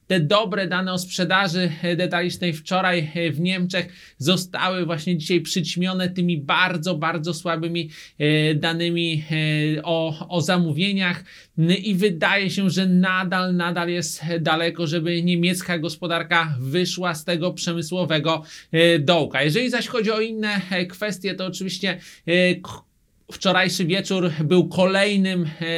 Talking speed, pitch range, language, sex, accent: 115 wpm, 165-180 Hz, Polish, male, native